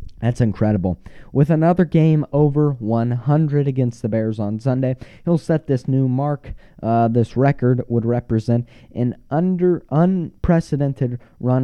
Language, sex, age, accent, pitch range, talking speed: English, male, 20-39, American, 120-170 Hz, 135 wpm